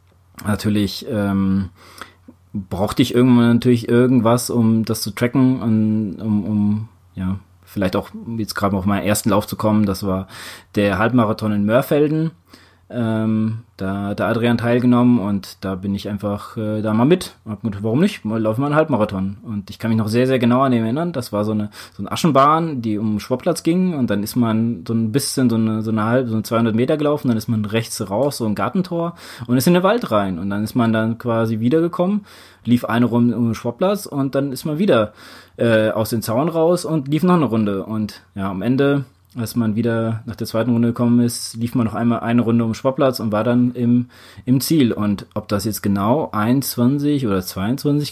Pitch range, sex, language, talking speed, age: 105-130 Hz, male, German, 210 wpm, 20-39